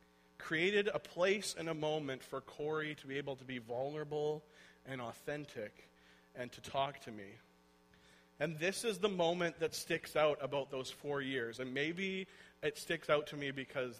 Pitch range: 110-150 Hz